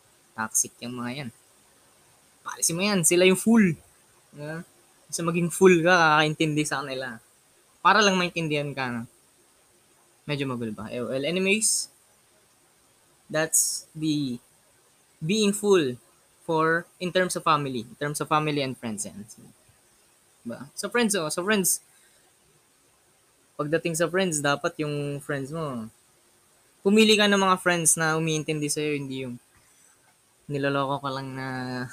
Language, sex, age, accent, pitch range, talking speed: Filipino, female, 20-39, native, 125-170 Hz, 140 wpm